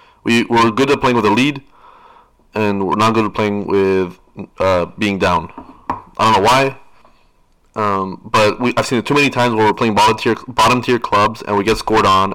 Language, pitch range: English, 100-120 Hz